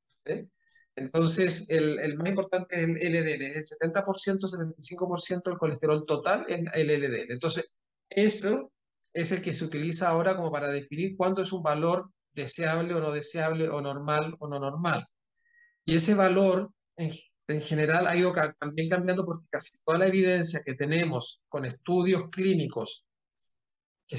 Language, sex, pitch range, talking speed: Romanian, male, 145-180 Hz, 160 wpm